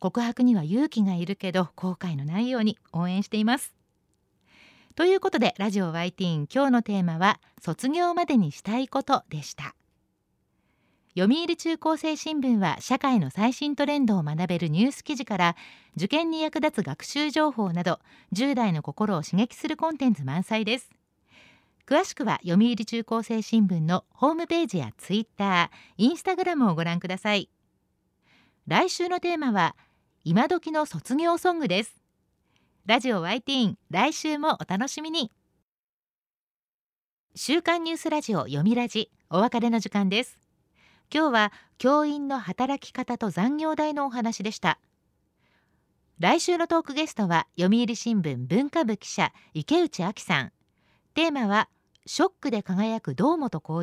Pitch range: 185-295 Hz